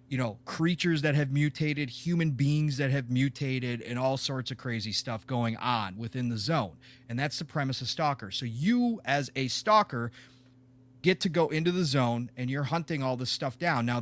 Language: English